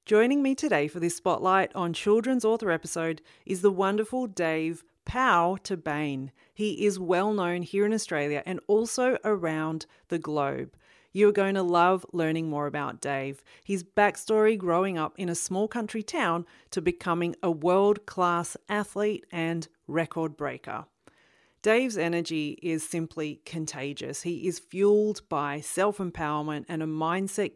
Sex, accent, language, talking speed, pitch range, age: female, Australian, English, 145 wpm, 155-205 Hz, 40-59